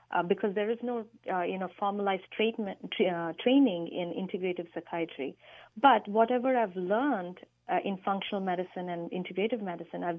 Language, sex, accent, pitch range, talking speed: English, female, Indian, 180-225 Hz, 160 wpm